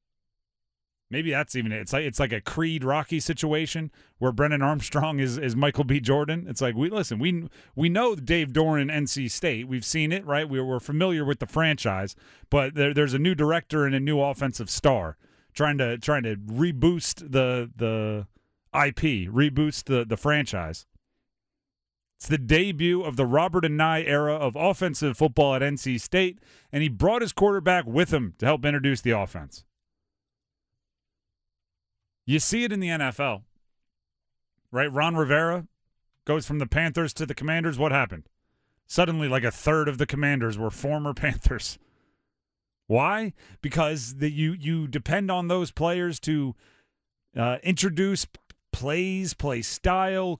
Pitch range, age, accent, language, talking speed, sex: 125-165 Hz, 30-49, American, English, 160 wpm, male